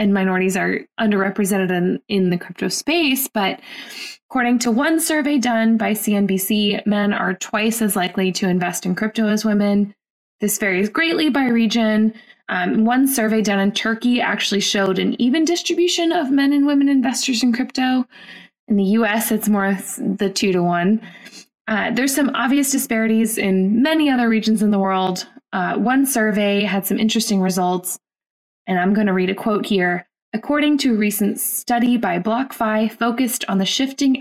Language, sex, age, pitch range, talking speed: English, female, 20-39, 195-245 Hz, 170 wpm